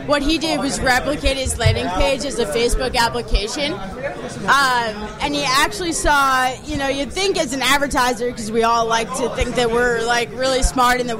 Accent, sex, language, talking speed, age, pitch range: American, female, English, 200 wpm, 20-39, 235-290 Hz